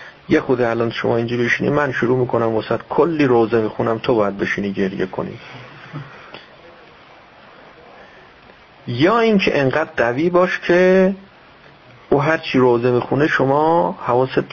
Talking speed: 125 wpm